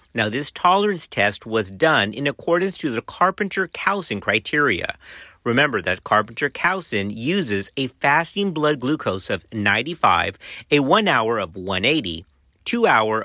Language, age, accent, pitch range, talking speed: English, 40-59, American, 105-165 Hz, 140 wpm